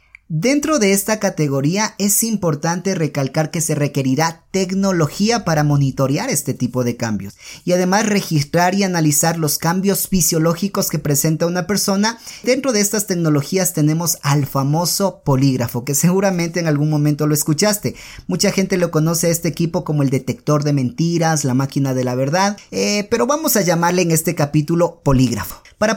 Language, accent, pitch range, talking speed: Spanish, Mexican, 150-190 Hz, 165 wpm